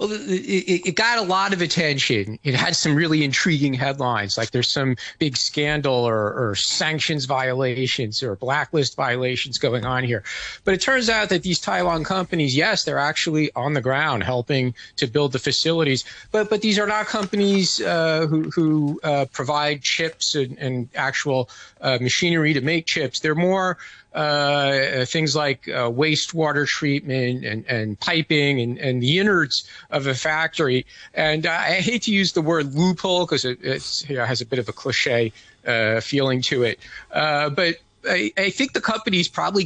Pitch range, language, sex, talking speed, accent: 130-170 Hz, English, male, 180 wpm, American